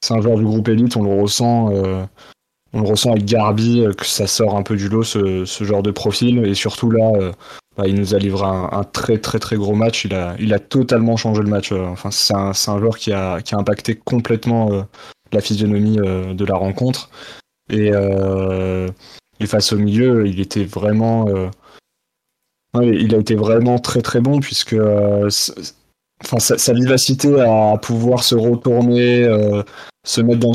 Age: 20-39